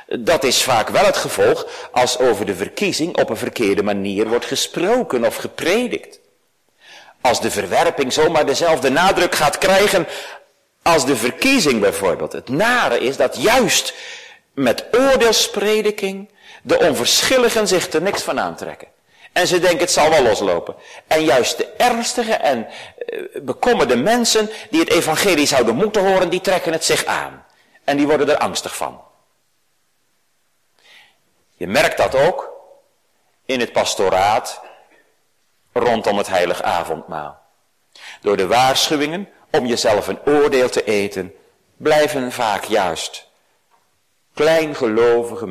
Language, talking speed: Dutch, 130 wpm